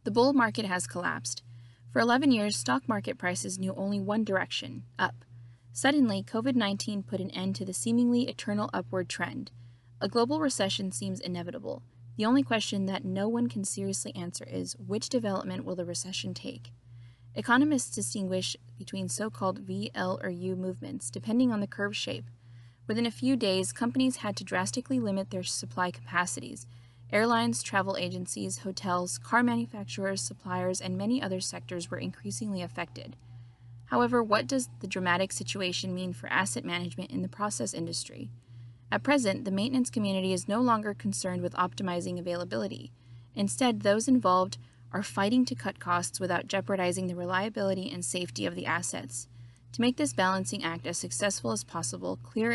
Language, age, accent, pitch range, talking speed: English, 20-39, American, 125-210 Hz, 160 wpm